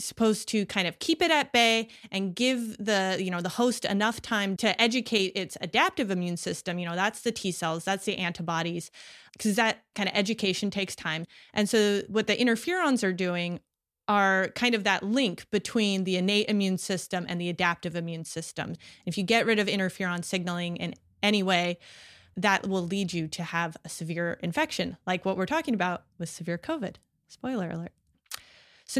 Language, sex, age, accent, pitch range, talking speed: English, female, 30-49, American, 185-230 Hz, 190 wpm